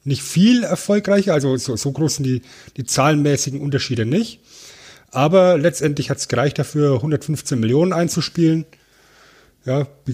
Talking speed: 135 wpm